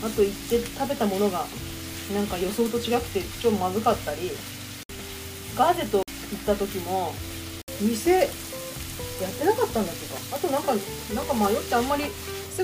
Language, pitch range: Japanese, 185-260 Hz